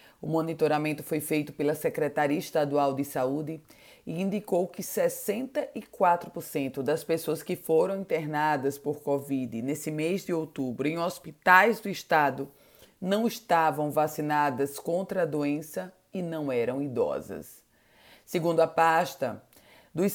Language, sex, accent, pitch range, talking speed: Portuguese, female, Brazilian, 150-195 Hz, 125 wpm